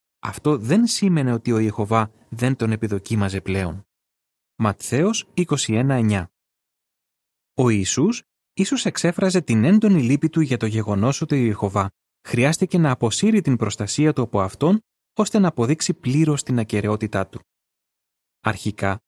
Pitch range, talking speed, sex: 105-150 Hz, 130 wpm, male